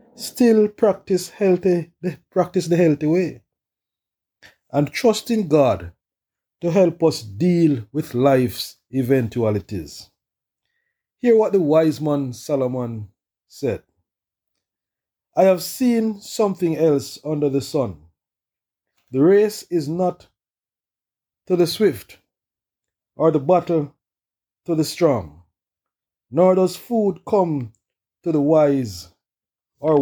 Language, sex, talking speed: English, male, 110 wpm